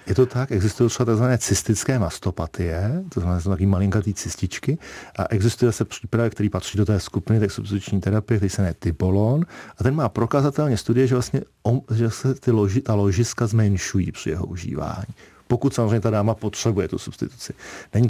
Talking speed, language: 175 wpm, Czech